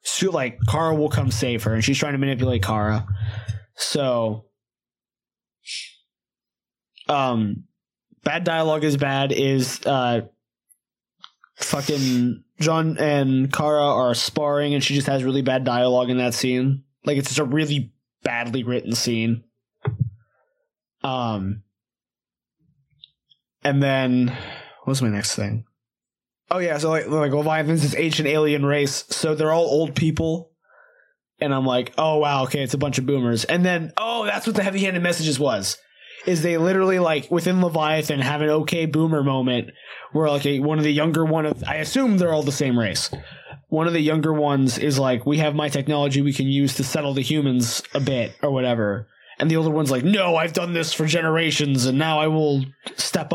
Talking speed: 170 wpm